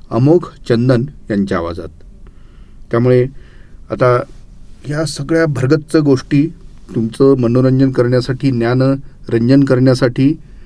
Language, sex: Marathi, male